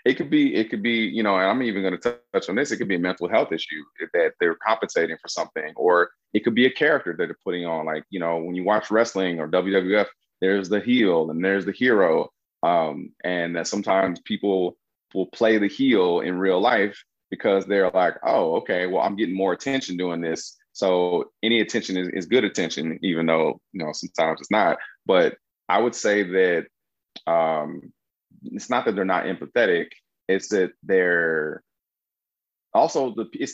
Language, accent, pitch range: English, American, 90-110 Hz